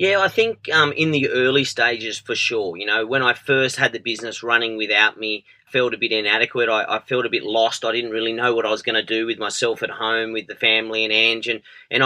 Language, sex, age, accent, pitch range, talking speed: English, male, 30-49, Australian, 120-150 Hz, 260 wpm